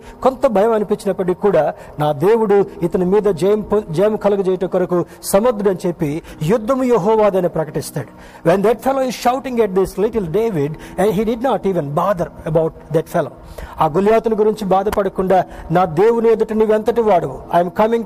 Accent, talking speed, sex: native, 145 wpm, male